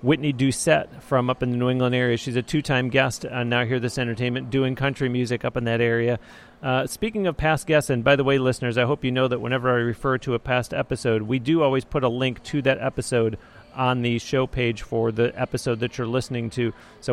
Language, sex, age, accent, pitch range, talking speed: English, male, 40-59, American, 120-140 Hz, 240 wpm